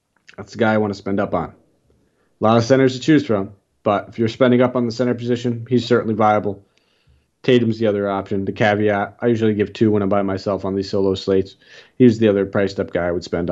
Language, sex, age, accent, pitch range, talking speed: English, male, 30-49, American, 105-130 Hz, 240 wpm